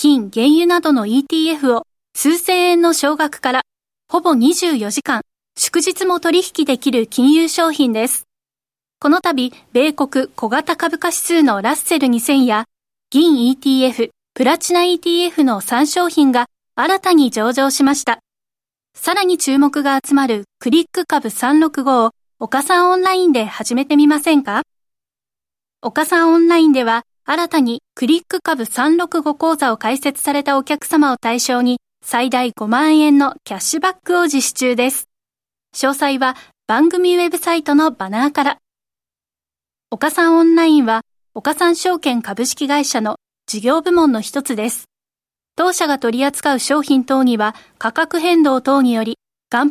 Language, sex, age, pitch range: Japanese, female, 20-39, 245-325 Hz